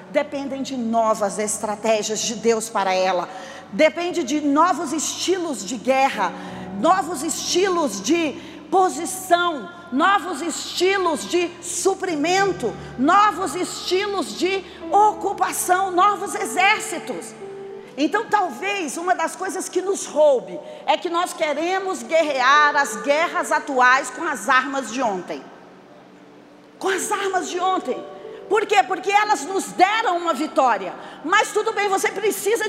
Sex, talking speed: female, 125 wpm